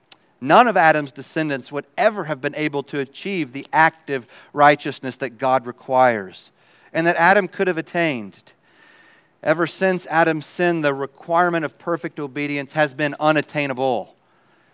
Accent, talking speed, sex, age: American, 145 wpm, male, 40-59